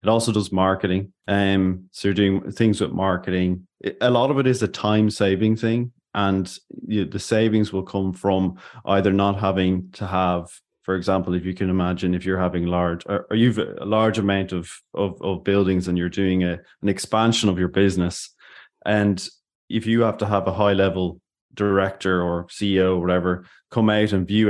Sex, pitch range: male, 90-100 Hz